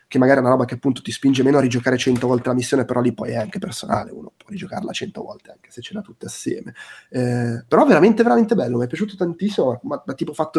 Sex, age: male, 20-39